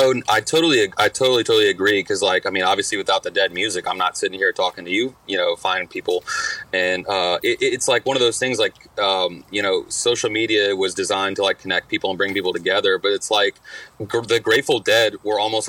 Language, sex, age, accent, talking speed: English, male, 30-49, American, 235 wpm